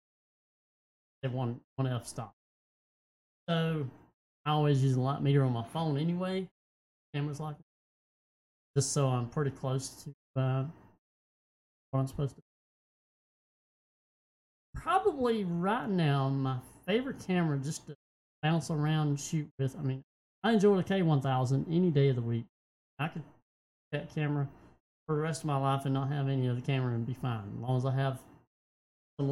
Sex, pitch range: male, 135-170 Hz